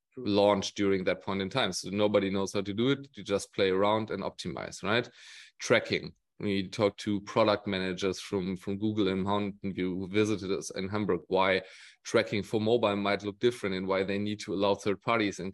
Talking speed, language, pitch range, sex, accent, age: 205 wpm, English, 100-110 Hz, male, German, 30-49